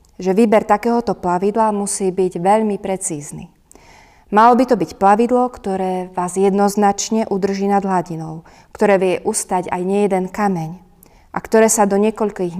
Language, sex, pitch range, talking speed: Slovak, female, 185-220 Hz, 145 wpm